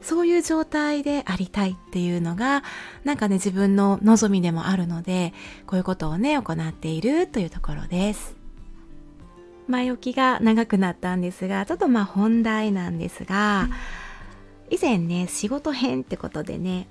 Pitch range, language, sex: 180-240 Hz, Japanese, female